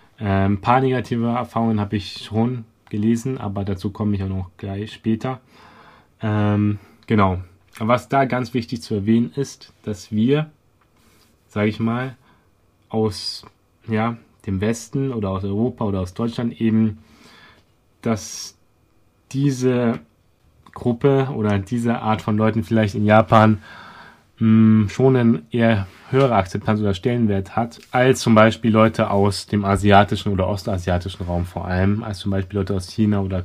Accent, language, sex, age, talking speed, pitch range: German, German, male, 30-49, 140 wpm, 100-115 Hz